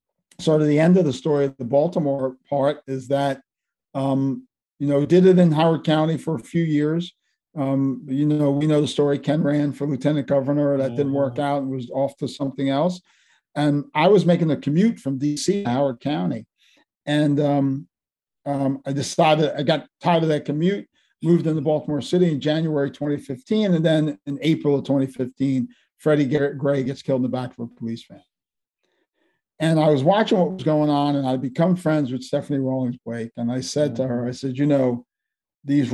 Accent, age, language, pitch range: American, 50-69, English, 130-150 Hz